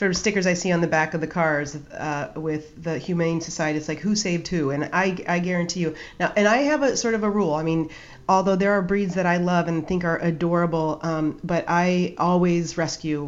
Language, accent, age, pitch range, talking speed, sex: English, American, 40-59, 160-210 Hz, 235 wpm, female